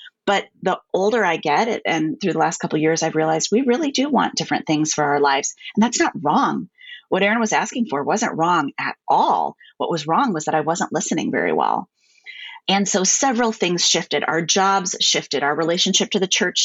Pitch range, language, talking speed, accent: 165-230 Hz, English, 215 wpm, American